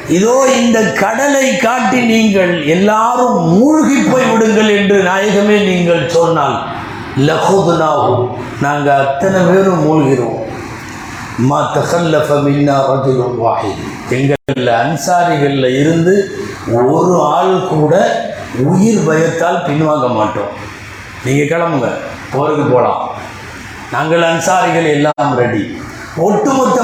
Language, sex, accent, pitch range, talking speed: Tamil, male, native, 140-195 Hz, 80 wpm